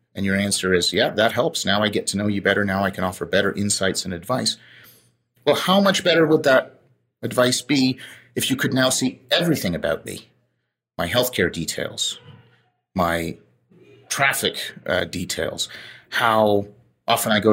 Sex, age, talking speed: male, 30-49, 170 wpm